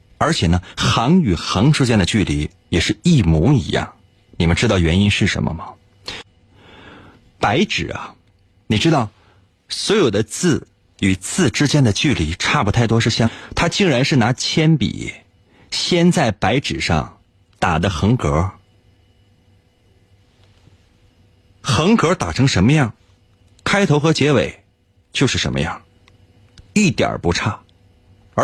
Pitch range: 95-145 Hz